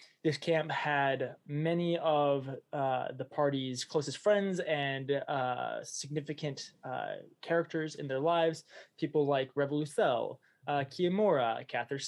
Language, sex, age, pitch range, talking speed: English, male, 20-39, 130-155 Hz, 120 wpm